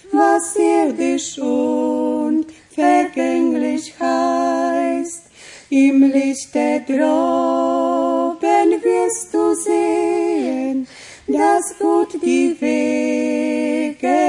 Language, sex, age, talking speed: Romanian, female, 30-49, 70 wpm